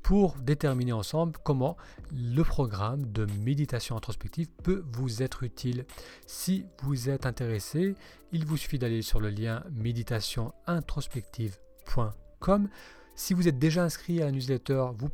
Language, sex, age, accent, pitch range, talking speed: French, male, 40-59, French, 120-160 Hz, 135 wpm